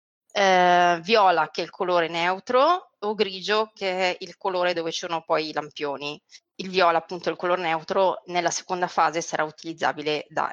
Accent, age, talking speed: native, 30-49, 180 wpm